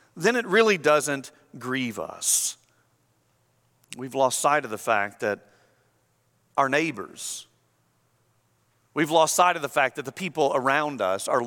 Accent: American